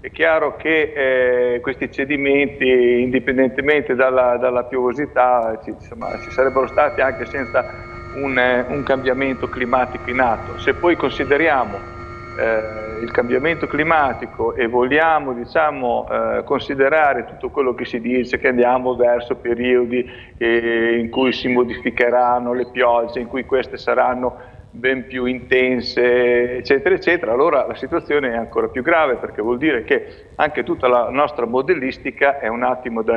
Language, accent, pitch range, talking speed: Italian, native, 120-140 Hz, 140 wpm